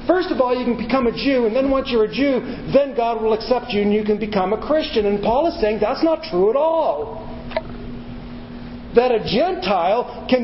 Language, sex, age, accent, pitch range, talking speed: English, male, 40-59, American, 205-255 Hz, 220 wpm